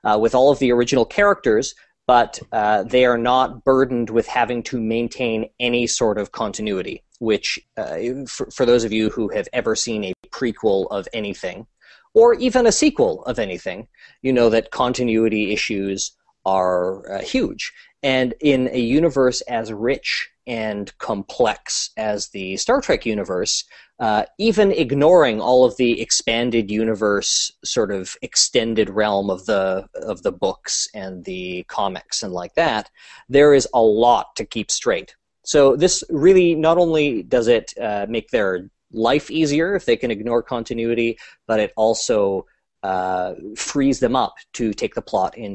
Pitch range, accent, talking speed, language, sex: 105-130 Hz, American, 160 wpm, English, male